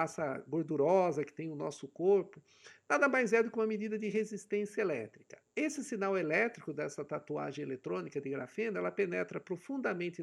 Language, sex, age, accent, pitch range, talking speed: Portuguese, male, 50-69, Brazilian, 185-225 Hz, 165 wpm